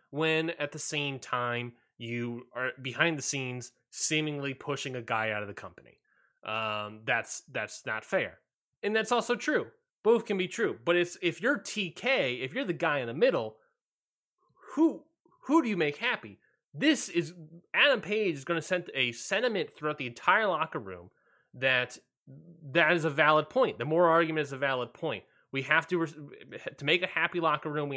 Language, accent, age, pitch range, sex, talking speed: English, American, 20-39, 120-170 Hz, male, 185 wpm